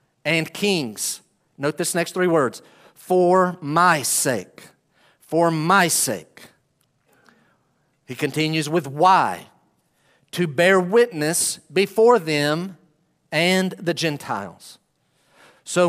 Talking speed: 100 wpm